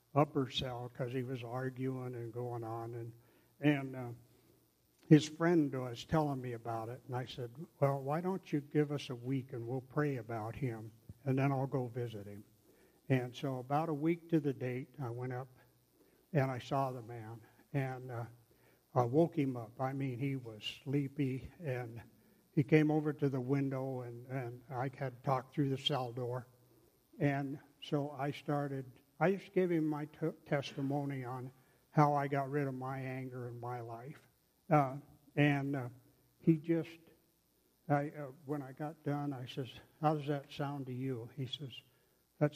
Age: 60-79